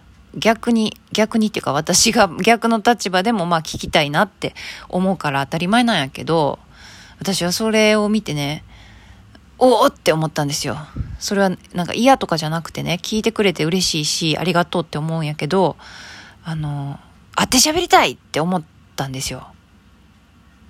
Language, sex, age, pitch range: Japanese, female, 20-39, 145-200 Hz